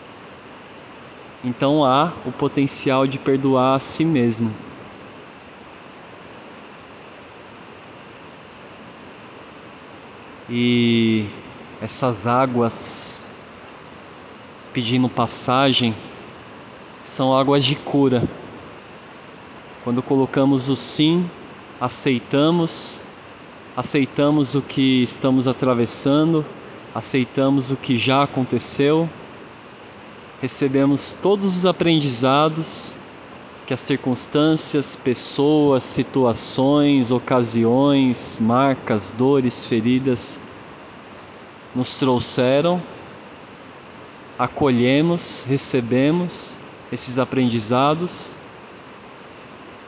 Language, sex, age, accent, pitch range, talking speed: Portuguese, male, 20-39, Brazilian, 125-145 Hz, 65 wpm